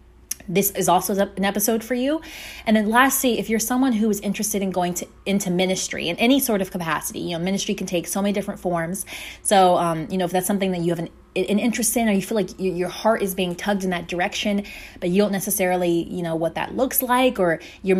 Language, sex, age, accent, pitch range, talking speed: English, female, 20-39, American, 175-205 Hz, 245 wpm